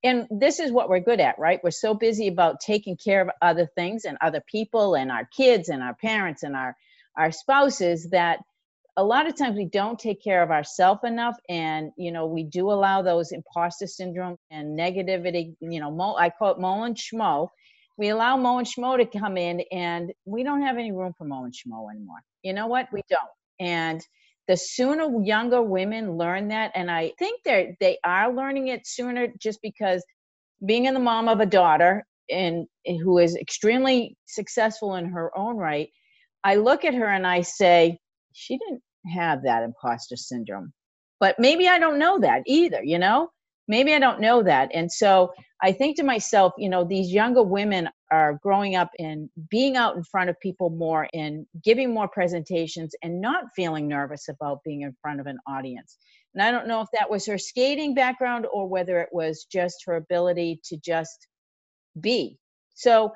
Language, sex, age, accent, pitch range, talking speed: English, female, 50-69, American, 165-225 Hz, 195 wpm